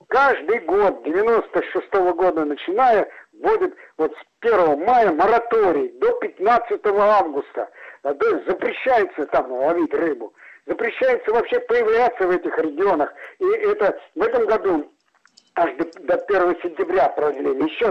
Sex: male